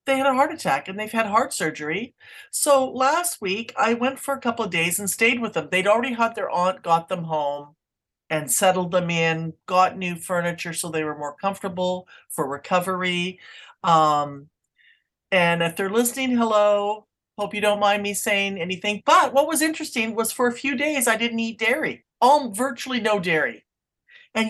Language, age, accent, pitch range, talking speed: English, 50-69, American, 175-230 Hz, 190 wpm